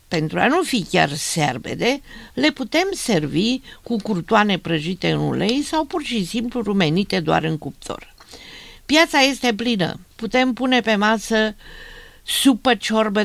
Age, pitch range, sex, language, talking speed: 50-69, 175-240 Hz, female, Romanian, 135 wpm